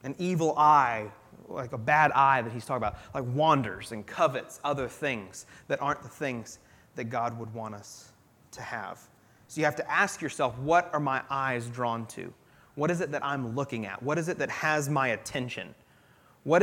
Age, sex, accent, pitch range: 30-49, male, American, 125-165 Hz